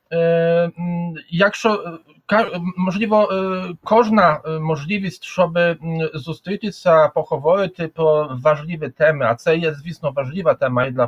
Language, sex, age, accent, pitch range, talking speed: Ukrainian, male, 40-59, Polish, 165-195 Hz, 110 wpm